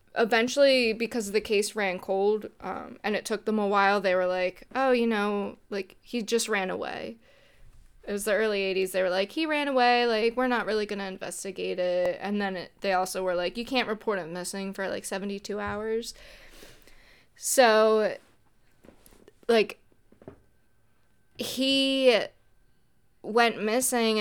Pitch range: 190-230 Hz